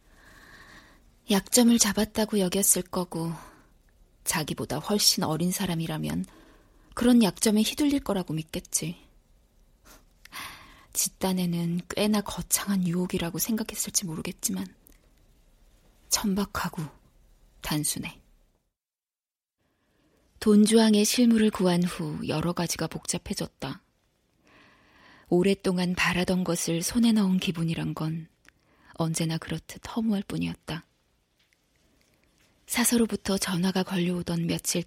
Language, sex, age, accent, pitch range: Korean, female, 20-39, native, 165-205 Hz